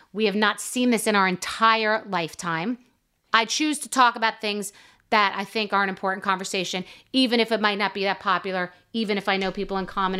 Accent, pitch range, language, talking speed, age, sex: American, 195-230 Hz, English, 220 wpm, 30-49, female